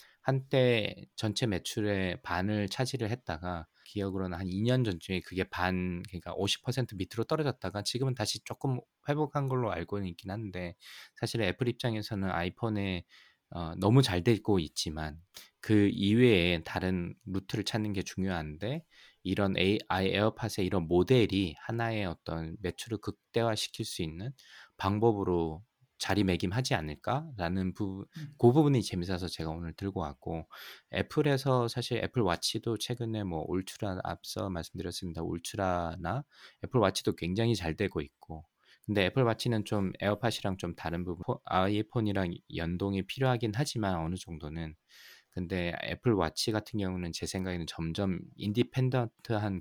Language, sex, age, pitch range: Korean, male, 20-39, 90-115 Hz